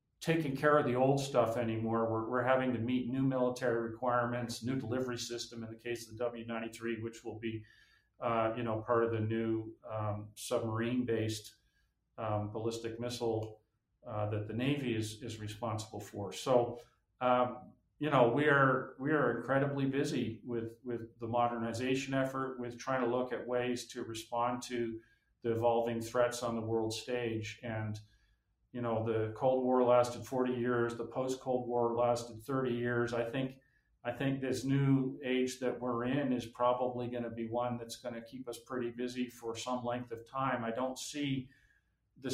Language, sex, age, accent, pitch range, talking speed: English, male, 50-69, American, 115-125 Hz, 180 wpm